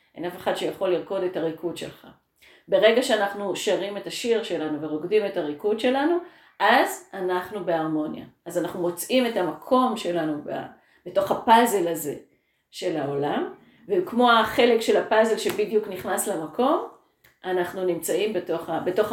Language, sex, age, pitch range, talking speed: Hebrew, female, 40-59, 175-220 Hz, 130 wpm